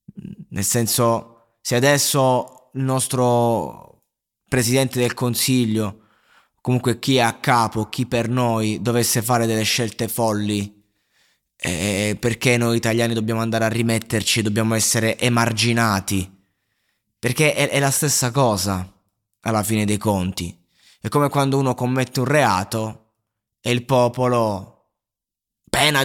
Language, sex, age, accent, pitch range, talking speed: Italian, male, 20-39, native, 105-120 Hz, 125 wpm